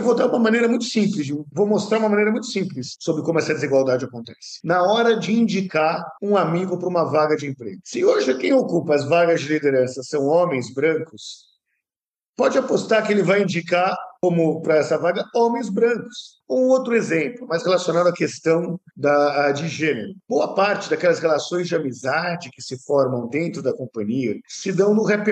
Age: 50-69